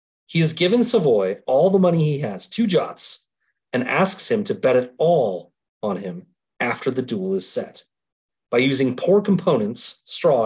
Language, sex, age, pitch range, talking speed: English, male, 40-59, 130-195 Hz, 170 wpm